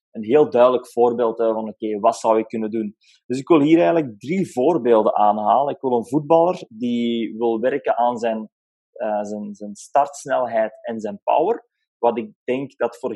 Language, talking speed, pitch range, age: English, 175 wpm, 120-155 Hz, 20-39